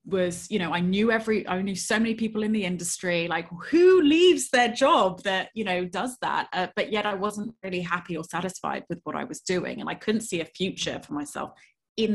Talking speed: 230 wpm